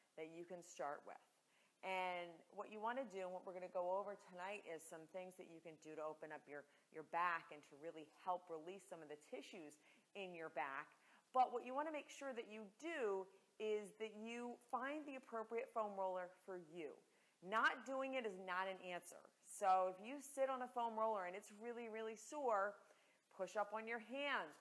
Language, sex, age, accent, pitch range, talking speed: English, female, 30-49, American, 175-225 Hz, 215 wpm